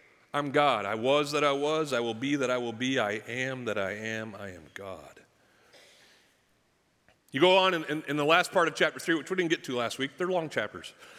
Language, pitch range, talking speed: English, 130-185 Hz, 235 wpm